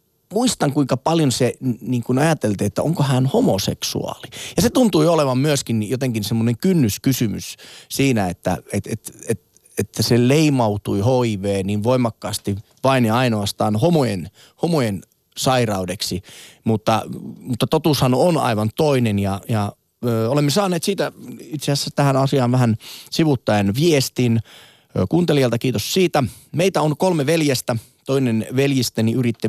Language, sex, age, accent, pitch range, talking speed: Finnish, male, 30-49, native, 110-145 Hz, 130 wpm